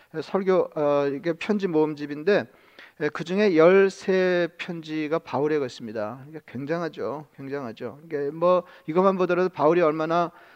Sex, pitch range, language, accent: male, 150-185 Hz, Korean, native